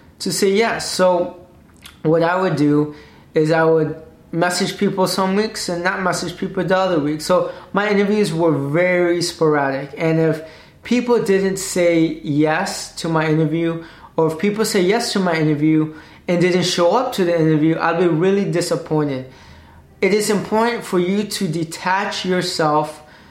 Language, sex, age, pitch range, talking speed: English, male, 20-39, 155-190 Hz, 165 wpm